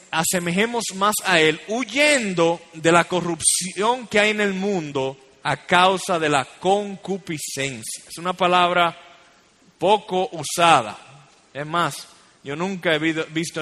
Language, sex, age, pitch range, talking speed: Spanish, male, 30-49, 155-195 Hz, 130 wpm